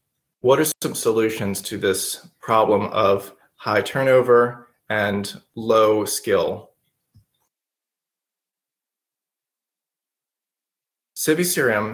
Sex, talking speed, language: male, 70 wpm, English